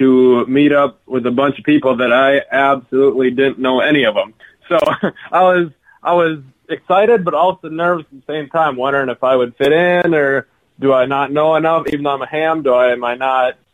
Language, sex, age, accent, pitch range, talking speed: English, male, 20-39, American, 130-155 Hz, 225 wpm